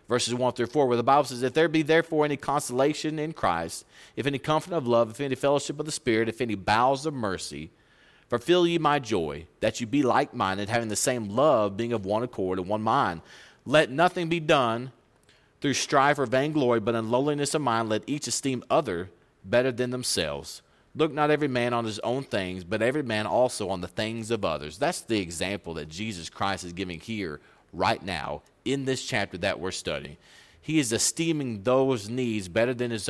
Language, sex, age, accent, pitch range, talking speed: English, male, 30-49, American, 110-140 Hz, 205 wpm